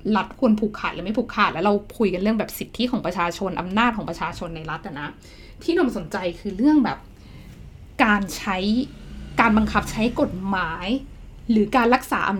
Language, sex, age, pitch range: Thai, female, 20-39, 190-245 Hz